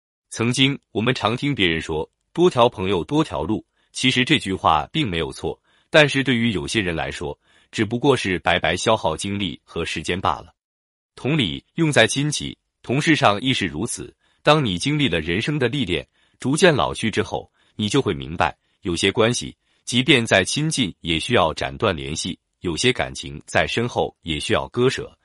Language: Japanese